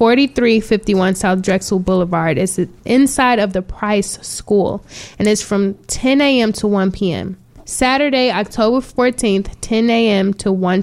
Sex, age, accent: female, 20-39, American